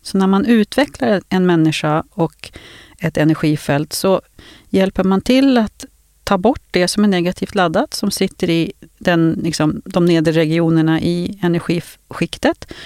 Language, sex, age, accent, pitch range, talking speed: Swedish, female, 40-59, native, 150-195 Hz, 145 wpm